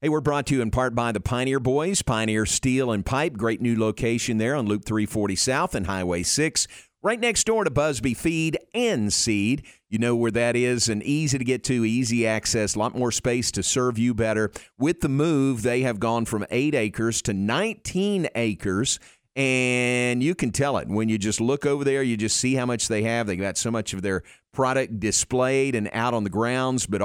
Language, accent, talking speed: English, American, 215 wpm